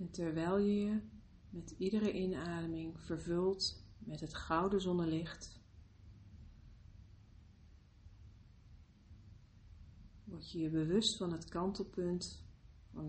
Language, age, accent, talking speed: Dutch, 40-59, Dutch, 90 wpm